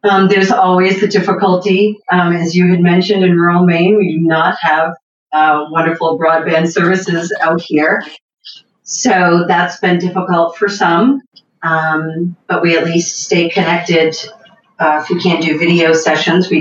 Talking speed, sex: 160 wpm, female